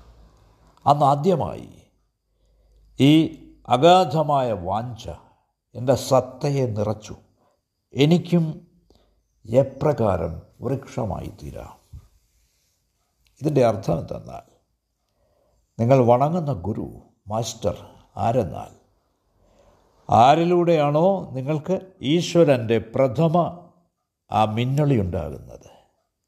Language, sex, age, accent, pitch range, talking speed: Malayalam, male, 60-79, native, 105-155 Hz, 60 wpm